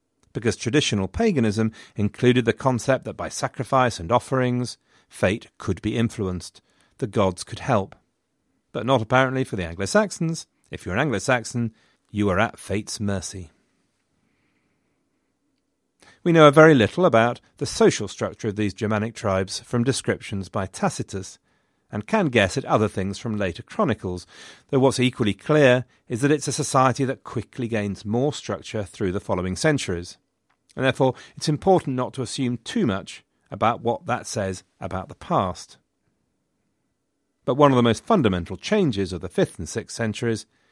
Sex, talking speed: male, 155 wpm